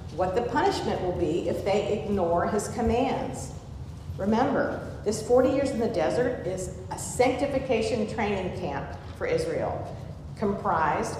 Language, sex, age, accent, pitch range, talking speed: English, female, 50-69, American, 180-225 Hz, 135 wpm